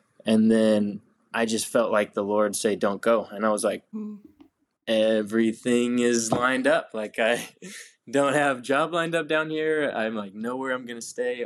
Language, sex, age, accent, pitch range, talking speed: English, male, 20-39, American, 105-120 Hz, 180 wpm